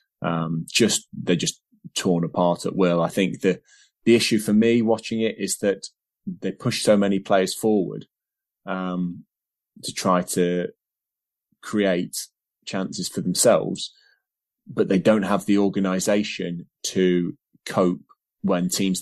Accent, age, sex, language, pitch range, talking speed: British, 30-49, male, English, 90-105 Hz, 135 wpm